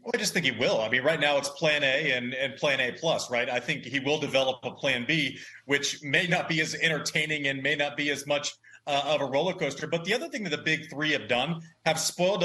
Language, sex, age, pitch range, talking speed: English, male, 30-49, 140-165 Hz, 265 wpm